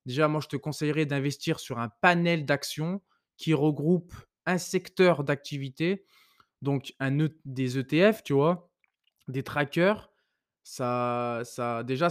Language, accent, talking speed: French, French, 135 wpm